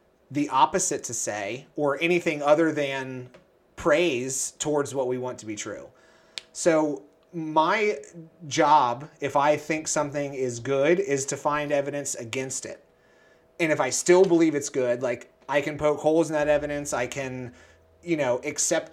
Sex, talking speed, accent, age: male, 160 wpm, American, 30-49